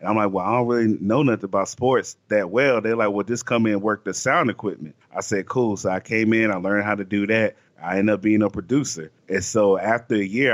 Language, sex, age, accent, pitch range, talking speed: English, male, 30-49, American, 100-115 Hz, 275 wpm